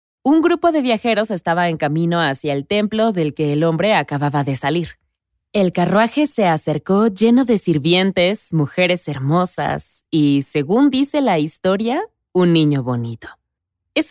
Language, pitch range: Spanish, 145-210 Hz